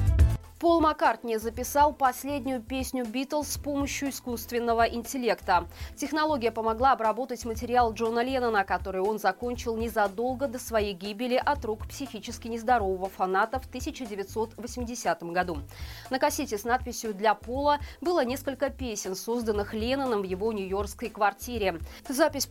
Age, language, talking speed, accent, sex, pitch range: 20-39, Russian, 125 wpm, native, female, 210-260 Hz